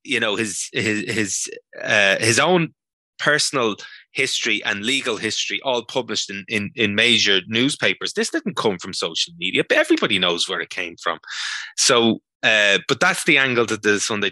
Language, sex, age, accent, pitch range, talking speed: English, male, 20-39, Irish, 95-135 Hz, 175 wpm